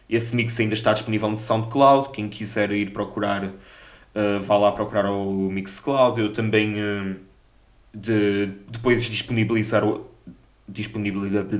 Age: 20-39